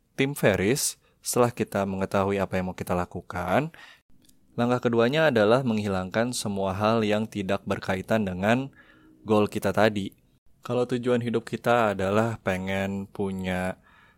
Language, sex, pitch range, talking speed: Indonesian, male, 95-110 Hz, 125 wpm